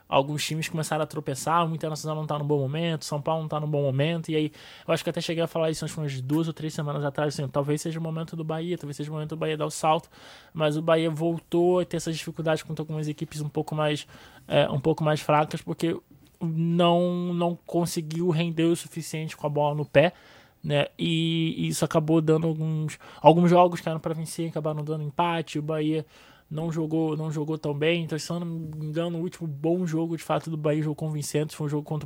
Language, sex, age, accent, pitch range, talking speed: Portuguese, male, 20-39, Brazilian, 145-165 Hz, 245 wpm